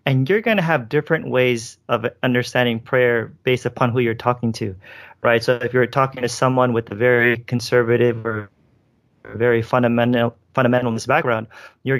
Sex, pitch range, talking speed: male, 115-130 Hz, 160 wpm